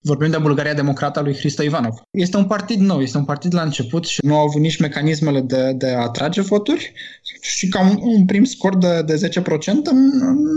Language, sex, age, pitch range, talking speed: Romanian, male, 20-39, 130-180 Hz, 205 wpm